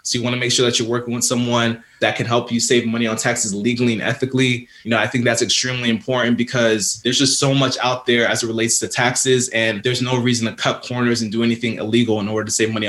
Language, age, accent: English, 20-39, American